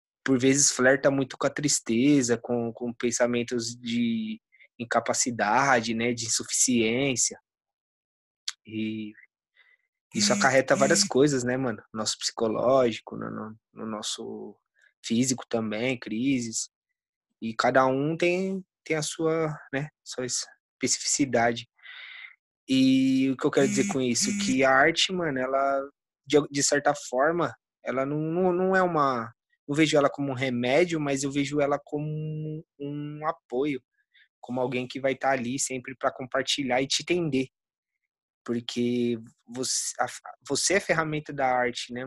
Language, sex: Portuguese, male